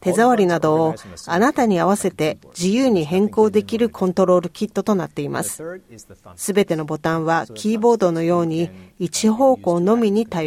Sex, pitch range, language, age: female, 165-215 Hz, Japanese, 40-59